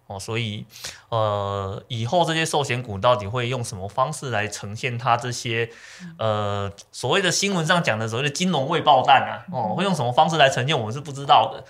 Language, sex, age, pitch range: Chinese, male, 20-39, 110-150 Hz